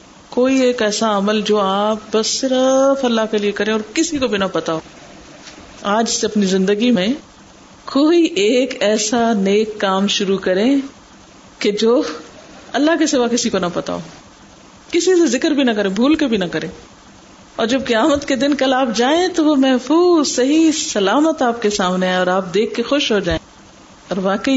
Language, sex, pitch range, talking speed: Urdu, female, 195-260 Hz, 190 wpm